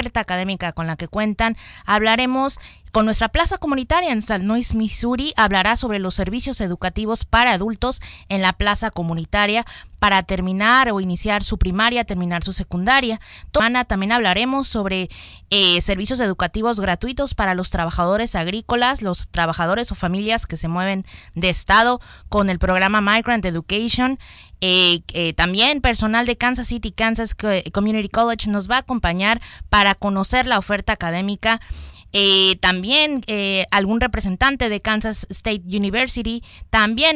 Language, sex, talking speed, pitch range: Spanish, female, 140 wpm, 195-235 Hz